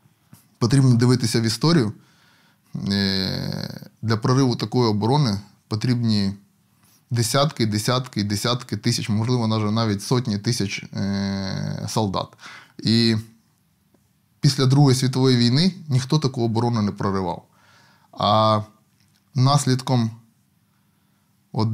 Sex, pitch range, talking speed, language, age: male, 110-130 Hz, 85 wpm, Ukrainian, 20-39